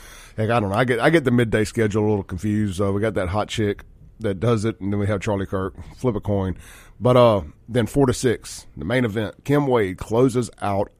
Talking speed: 245 wpm